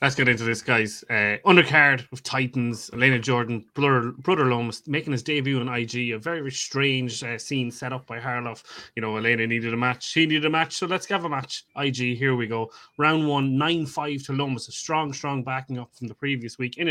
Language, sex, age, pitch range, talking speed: English, male, 20-39, 115-135 Hz, 220 wpm